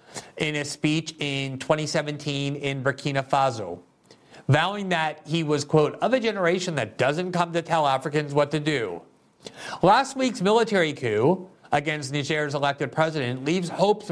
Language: English